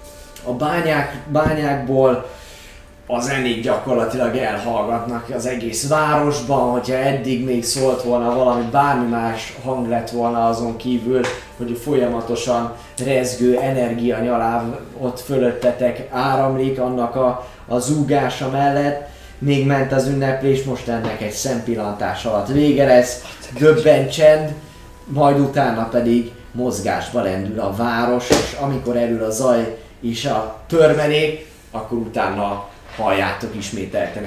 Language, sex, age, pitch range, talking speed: Hungarian, male, 20-39, 115-135 Hz, 115 wpm